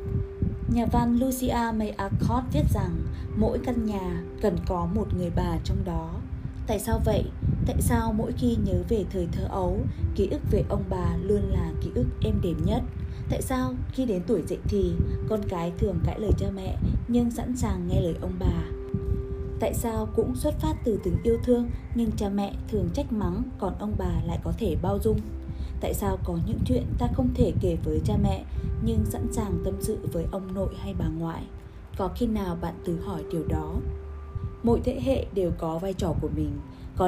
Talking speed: 205 wpm